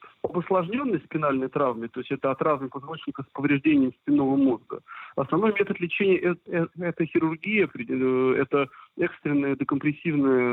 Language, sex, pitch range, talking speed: Russian, male, 140-175 Hz, 130 wpm